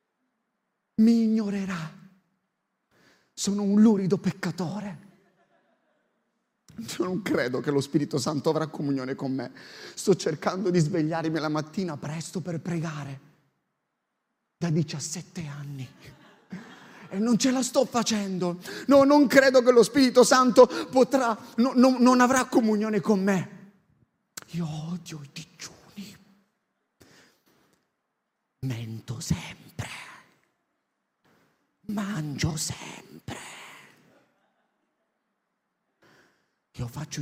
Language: Italian